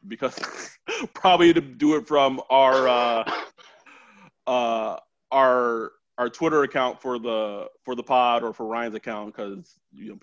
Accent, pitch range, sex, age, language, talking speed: American, 120-150 Hz, male, 20-39, English, 145 wpm